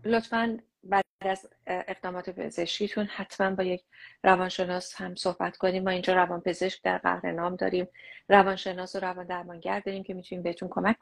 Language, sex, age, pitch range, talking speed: English, female, 30-49, 180-200 Hz, 155 wpm